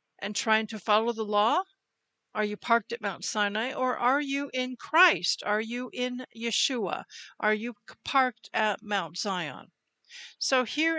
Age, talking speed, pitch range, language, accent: 60-79, 160 wpm, 210-290 Hz, English, American